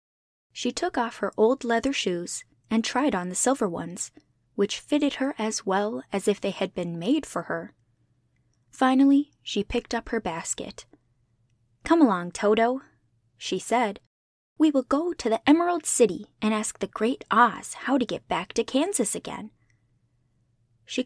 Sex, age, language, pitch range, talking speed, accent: female, 10-29, English, 170-250 Hz, 160 wpm, American